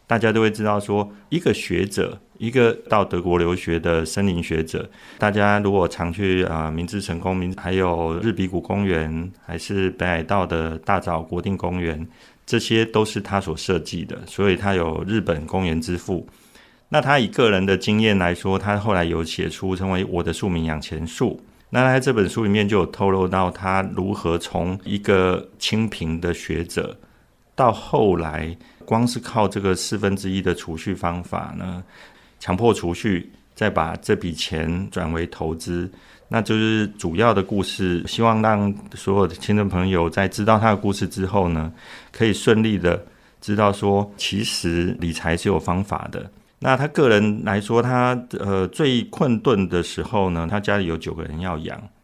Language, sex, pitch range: Chinese, male, 85-105 Hz